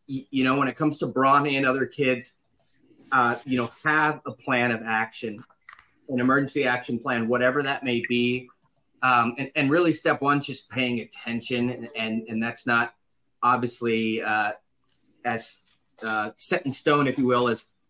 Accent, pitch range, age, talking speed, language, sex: American, 115-140 Hz, 30-49, 175 wpm, English, male